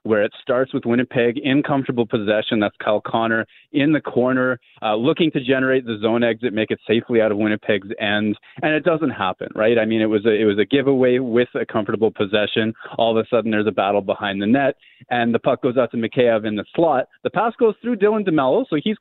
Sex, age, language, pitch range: male, 30-49, English, 110-135 Hz